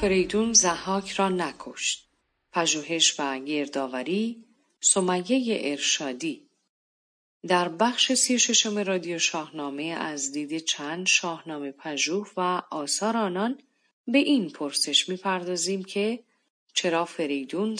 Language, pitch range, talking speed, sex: Persian, 155-220 Hz, 100 wpm, female